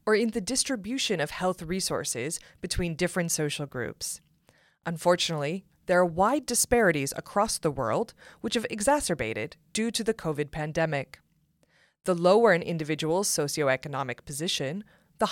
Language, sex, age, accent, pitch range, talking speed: English, female, 30-49, American, 150-210 Hz, 135 wpm